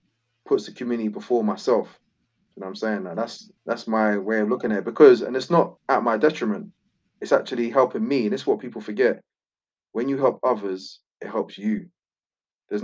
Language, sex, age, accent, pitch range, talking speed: English, male, 20-39, British, 110-140 Hz, 200 wpm